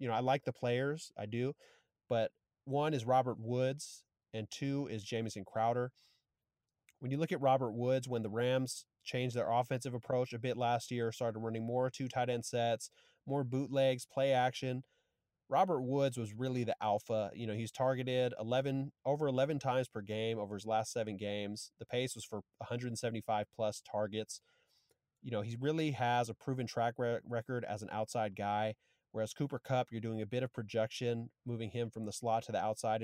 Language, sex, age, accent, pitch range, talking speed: English, male, 30-49, American, 110-130 Hz, 190 wpm